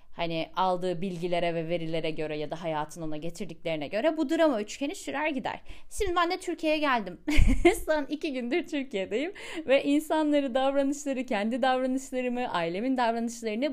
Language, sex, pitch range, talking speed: Turkish, female, 180-275 Hz, 145 wpm